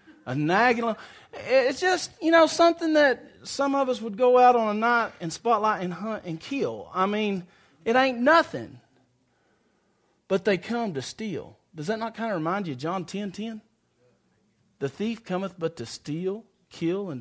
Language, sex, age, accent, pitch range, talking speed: English, male, 40-59, American, 175-270 Hz, 180 wpm